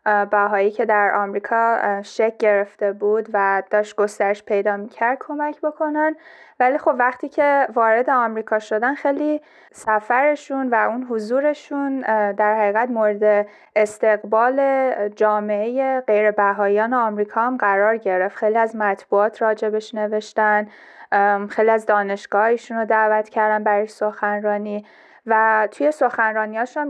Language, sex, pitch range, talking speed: Persian, female, 205-235 Hz, 120 wpm